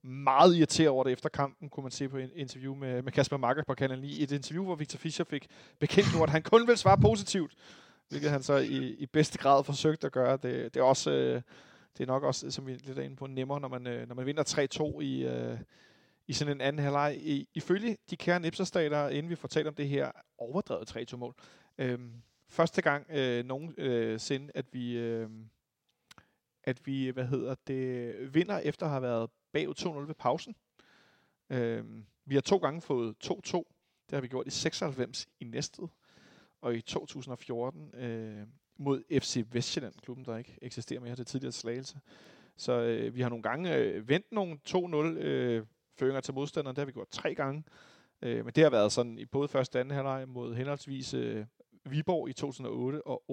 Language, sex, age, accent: Danish, male, 30-49, native